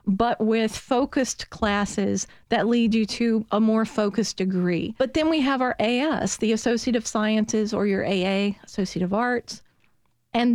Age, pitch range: 40-59, 205-240 Hz